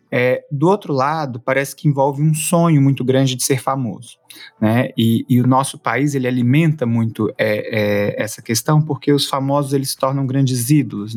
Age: 20-39